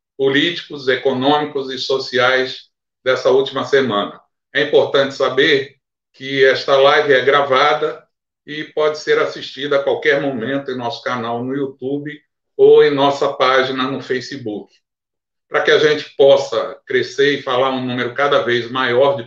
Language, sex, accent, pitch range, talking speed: Portuguese, male, Brazilian, 135-185 Hz, 145 wpm